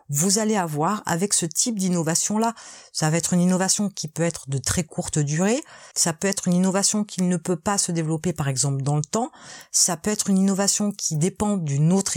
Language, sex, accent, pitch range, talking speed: French, female, French, 170-230 Hz, 215 wpm